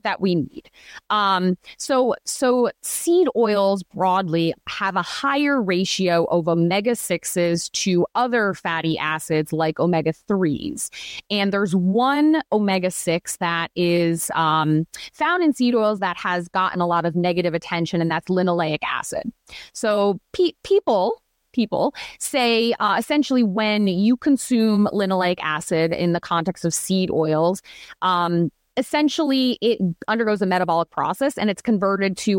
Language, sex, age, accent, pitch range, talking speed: English, female, 30-49, American, 170-225 Hz, 130 wpm